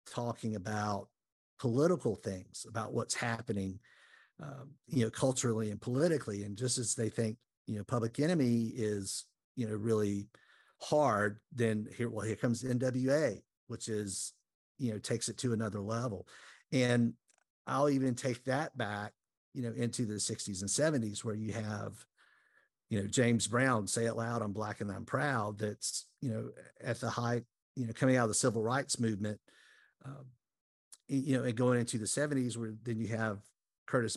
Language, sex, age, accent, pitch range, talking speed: English, male, 50-69, American, 105-125 Hz, 170 wpm